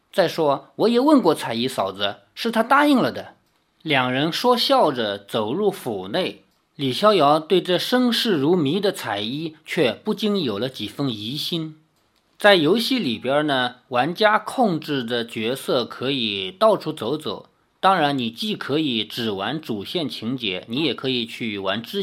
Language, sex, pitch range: Chinese, male, 120-195 Hz